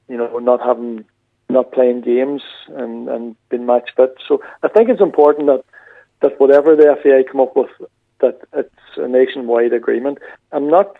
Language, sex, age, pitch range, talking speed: English, male, 40-59, 120-145 Hz, 185 wpm